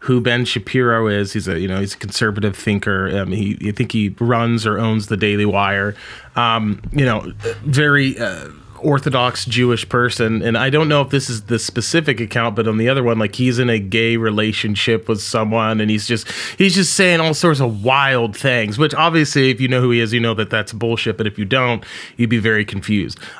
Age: 30-49